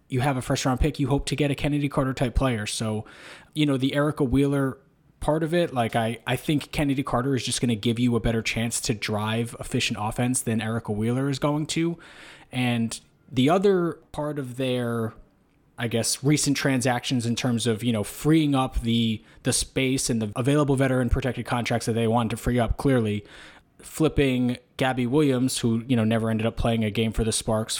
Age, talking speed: 20-39, 205 wpm